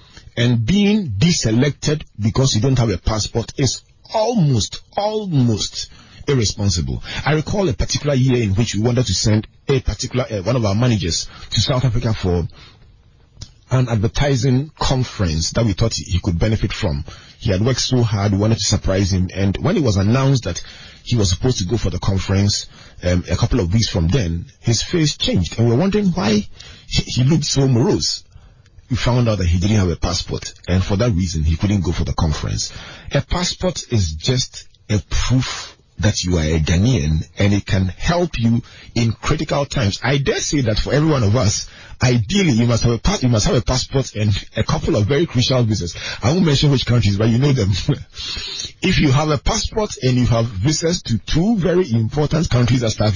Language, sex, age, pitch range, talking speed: English, male, 40-59, 100-130 Hz, 205 wpm